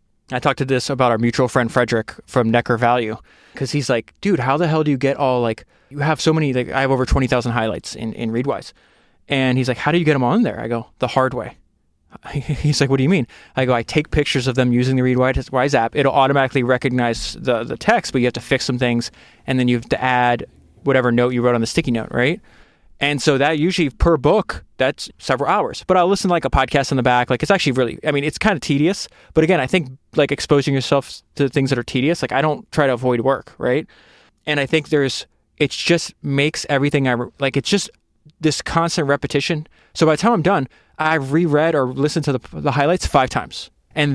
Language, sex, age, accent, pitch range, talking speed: English, male, 20-39, American, 125-155 Hz, 245 wpm